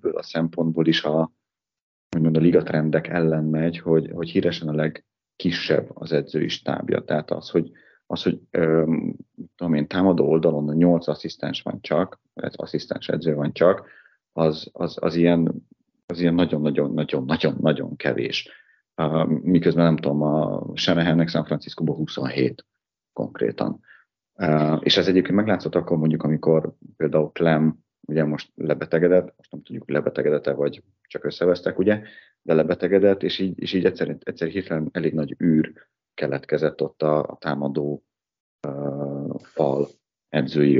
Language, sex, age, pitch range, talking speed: Hungarian, male, 30-49, 75-90 Hz, 135 wpm